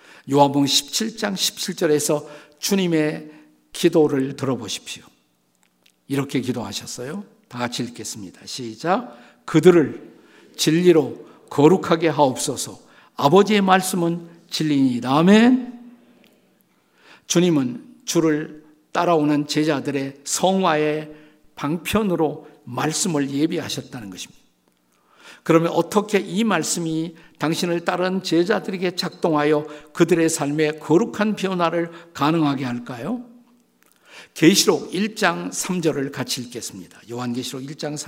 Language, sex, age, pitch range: Korean, male, 50-69, 135-185 Hz